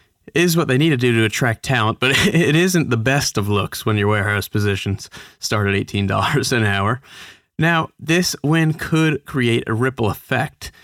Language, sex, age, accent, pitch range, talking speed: English, male, 20-39, American, 110-140 Hz, 185 wpm